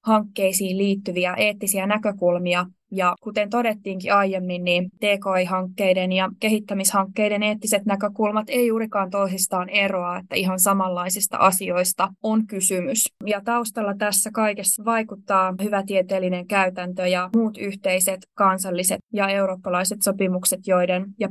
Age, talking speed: 20-39, 115 wpm